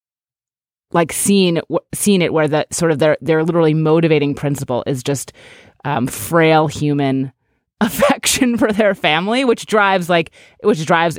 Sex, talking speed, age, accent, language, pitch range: female, 145 wpm, 30-49, American, English, 135-190 Hz